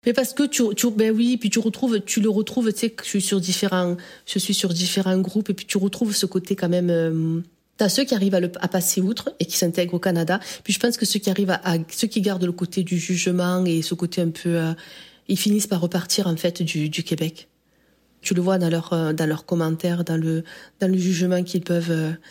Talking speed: 260 wpm